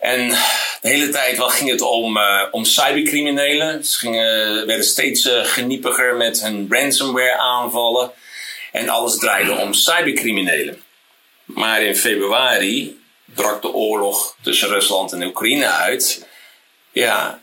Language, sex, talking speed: Dutch, male, 125 wpm